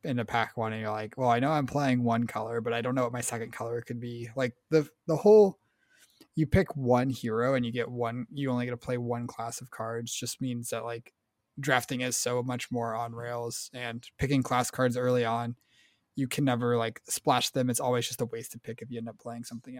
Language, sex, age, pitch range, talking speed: English, male, 20-39, 120-130 Hz, 245 wpm